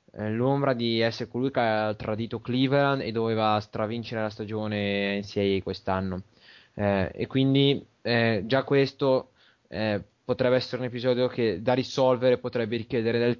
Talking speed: 145 wpm